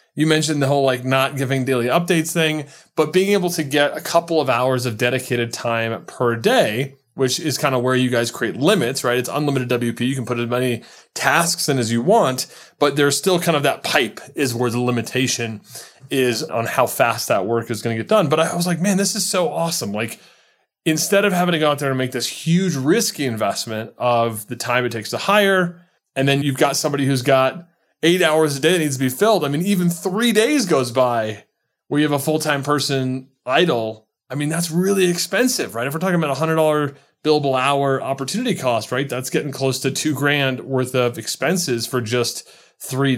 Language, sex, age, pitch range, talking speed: English, male, 30-49, 125-165 Hz, 220 wpm